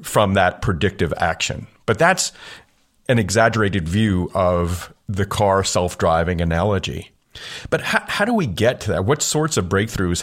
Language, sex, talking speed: English, male, 155 wpm